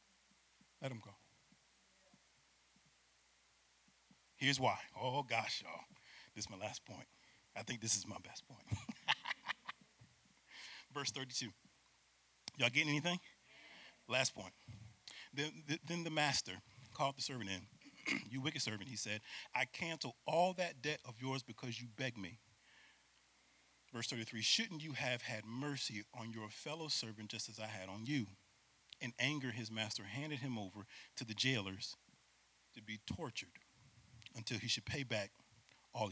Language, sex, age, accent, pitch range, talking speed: English, male, 40-59, American, 105-135 Hz, 145 wpm